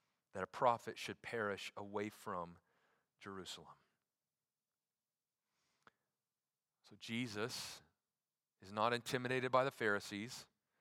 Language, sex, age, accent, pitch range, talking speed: English, male, 40-59, American, 110-155 Hz, 90 wpm